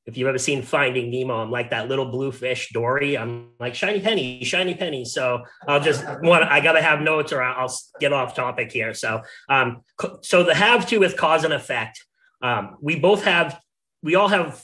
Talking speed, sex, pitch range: 200 wpm, male, 125-160 Hz